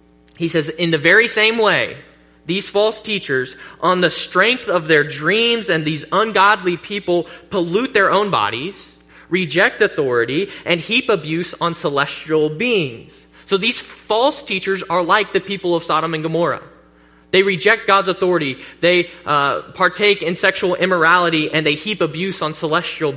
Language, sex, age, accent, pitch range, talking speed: English, male, 20-39, American, 150-195 Hz, 155 wpm